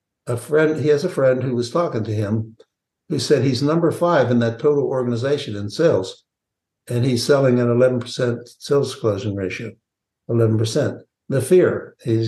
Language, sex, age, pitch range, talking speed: English, male, 60-79, 110-135 Hz, 165 wpm